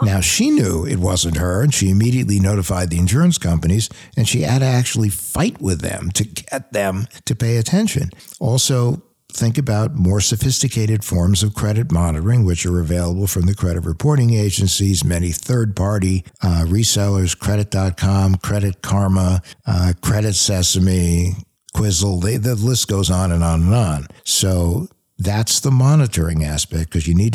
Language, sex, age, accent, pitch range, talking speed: English, male, 60-79, American, 90-115 Hz, 155 wpm